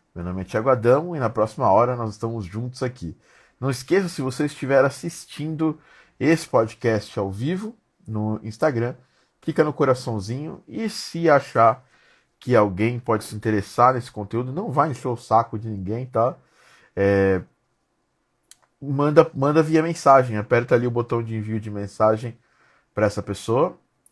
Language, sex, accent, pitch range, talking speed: Portuguese, male, Brazilian, 110-150 Hz, 150 wpm